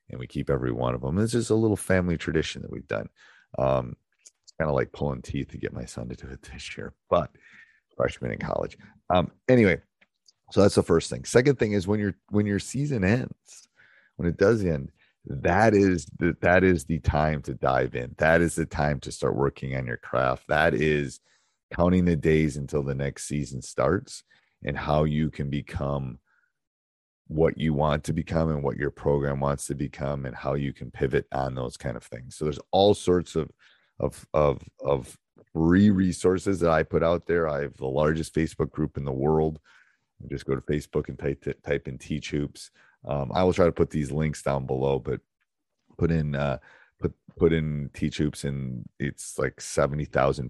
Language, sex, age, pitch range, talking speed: English, male, 30-49, 70-85 Hz, 200 wpm